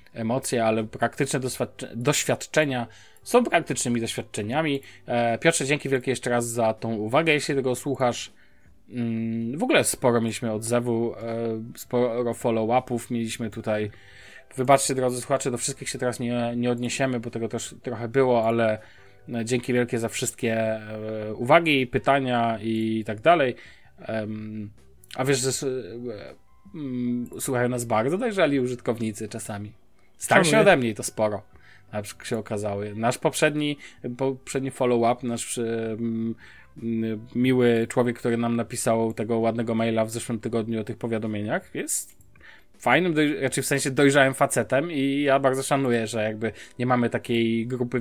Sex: male